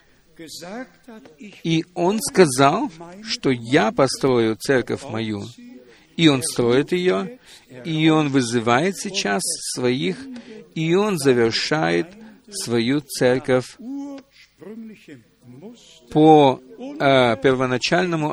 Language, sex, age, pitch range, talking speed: Russian, male, 50-69, 130-195 Hz, 80 wpm